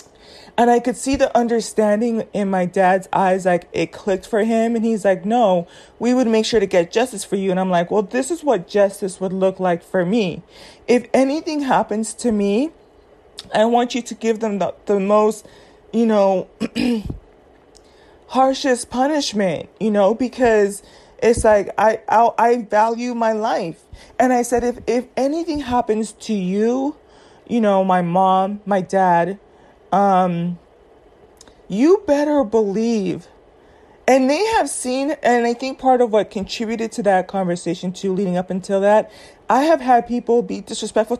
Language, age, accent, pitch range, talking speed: English, 20-39, American, 195-250 Hz, 170 wpm